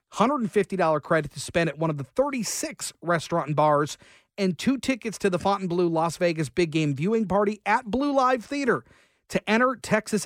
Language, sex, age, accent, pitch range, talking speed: English, male, 40-59, American, 155-205 Hz, 180 wpm